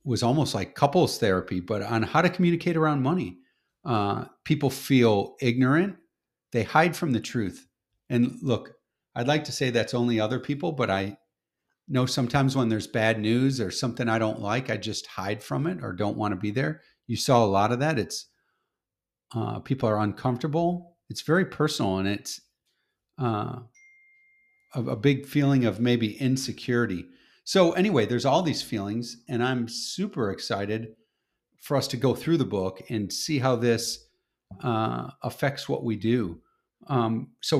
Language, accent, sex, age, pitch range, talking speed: English, American, male, 40-59, 110-140 Hz, 170 wpm